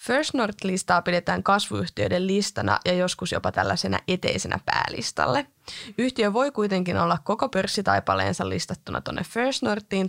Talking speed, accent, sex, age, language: 120 wpm, native, female, 20-39, Finnish